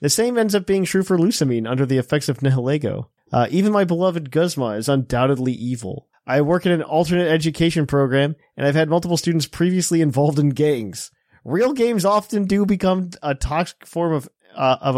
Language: English